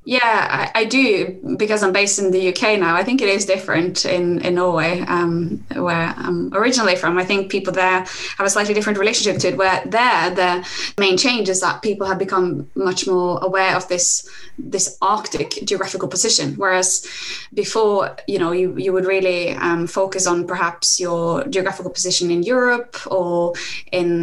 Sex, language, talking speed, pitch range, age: female, English, 180 wpm, 180-205 Hz, 20-39